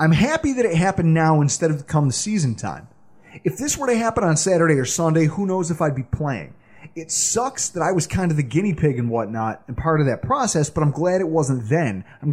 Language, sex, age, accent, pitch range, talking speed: English, male, 30-49, American, 140-220 Hz, 250 wpm